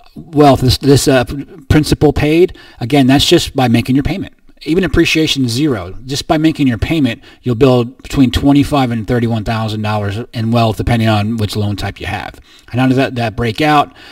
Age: 30-49